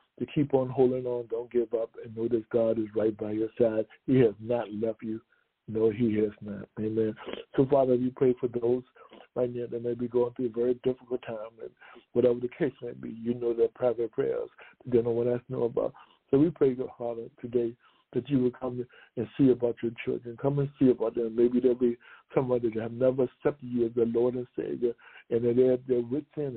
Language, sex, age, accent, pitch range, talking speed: English, male, 60-79, American, 120-135 Hz, 235 wpm